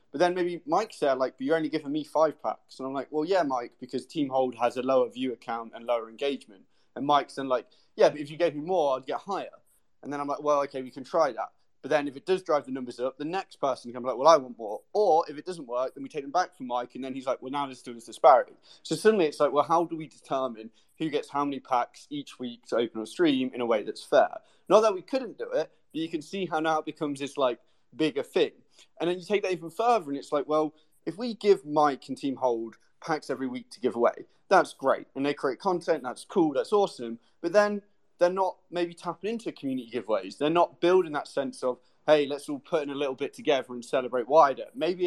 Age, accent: 20-39, British